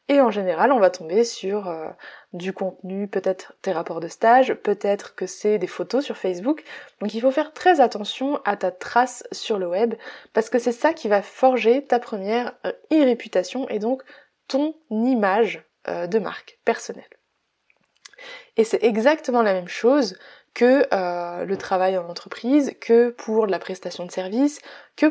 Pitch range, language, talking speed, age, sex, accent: 195-270 Hz, French, 170 wpm, 20-39, female, French